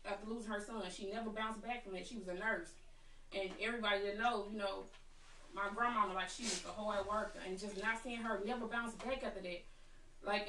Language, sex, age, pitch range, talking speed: English, female, 20-39, 200-235 Hz, 225 wpm